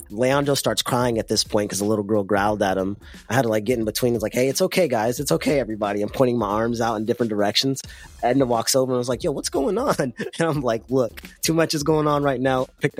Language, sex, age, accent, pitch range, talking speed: English, male, 20-39, American, 110-145 Hz, 275 wpm